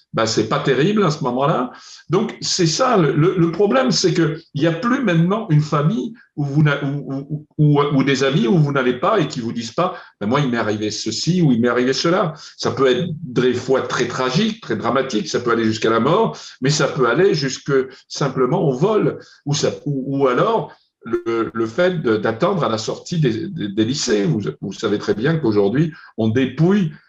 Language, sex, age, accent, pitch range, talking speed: French, male, 50-69, French, 125-175 Hz, 210 wpm